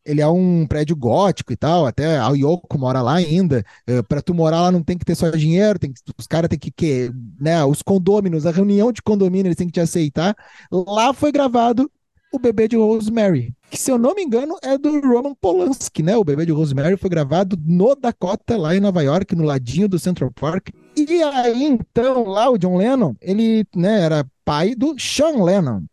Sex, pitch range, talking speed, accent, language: male, 150-210 Hz, 205 wpm, Brazilian, Portuguese